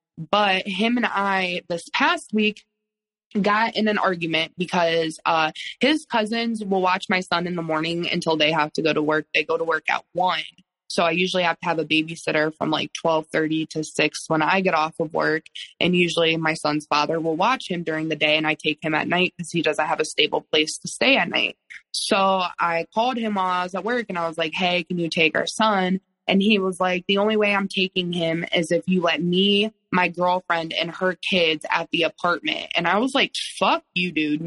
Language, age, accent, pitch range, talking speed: English, 20-39, American, 165-195 Hz, 230 wpm